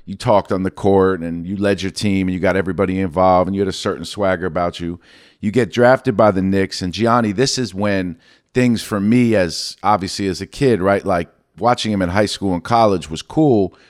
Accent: American